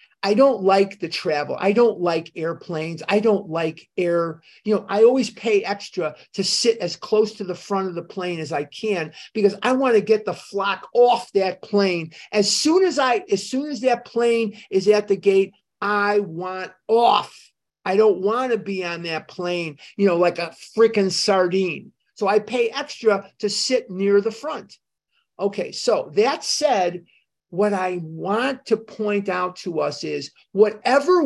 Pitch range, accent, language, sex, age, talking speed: 165-220 Hz, American, English, male, 50-69, 180 wpm